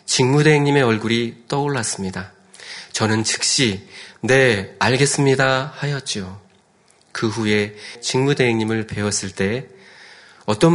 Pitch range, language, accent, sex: 105-140 Hz, Korean, native, male